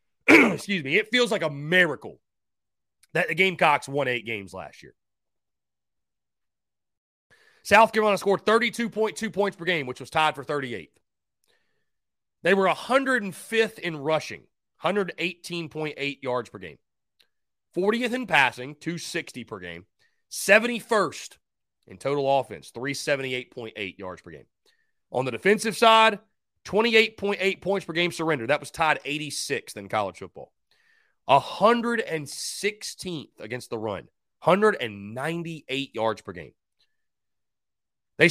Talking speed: 115 wpm